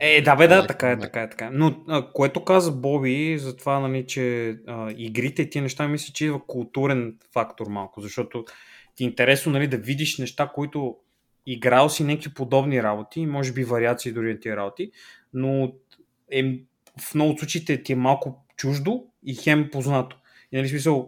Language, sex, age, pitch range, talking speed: Bulgarian, male, 20-39, 115-140 Hz, 190 wpm